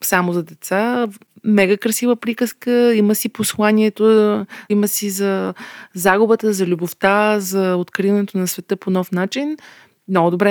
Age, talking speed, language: 30-49, 135 wpm, Bulgarian